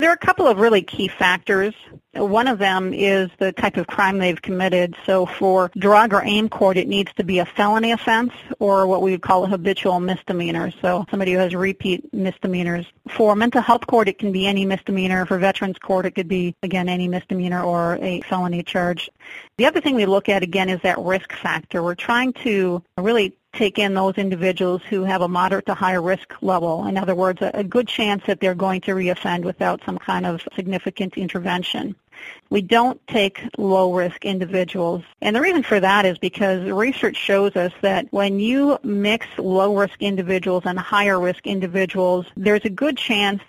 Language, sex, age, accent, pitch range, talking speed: English, female, 40-59, American, 185-205 Hz, 190 wpm